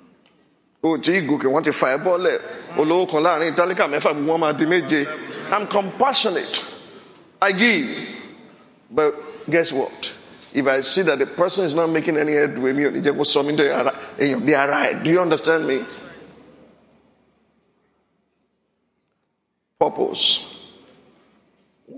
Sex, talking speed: male, 70 wpm